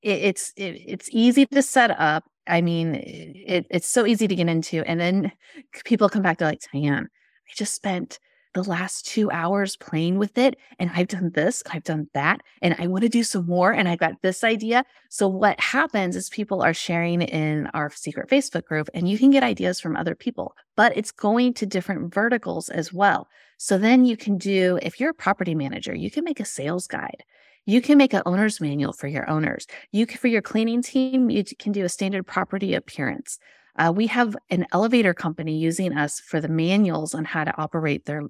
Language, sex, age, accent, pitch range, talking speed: English, female, 30-49, American, 165-220 Hz, 210 wpm